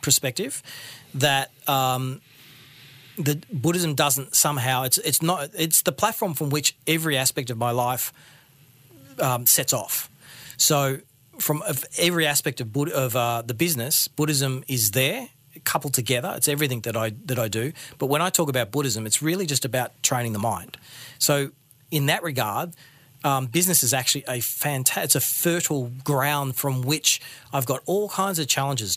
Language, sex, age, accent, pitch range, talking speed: English, male, 40-59, Australian, 130-155 Hz, 165 wpm